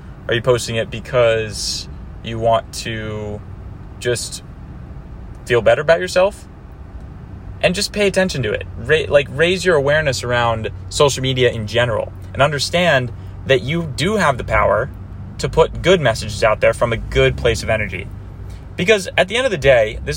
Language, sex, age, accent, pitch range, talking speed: English, male, 20-39, American, 95-135 Hz, 165 wpm